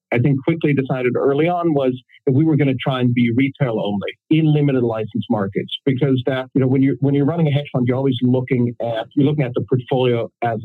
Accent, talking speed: American, 240 wpm